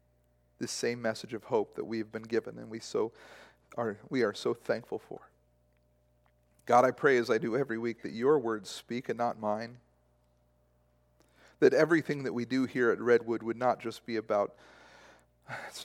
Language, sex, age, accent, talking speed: English, male, 40-59, American, 180 wpm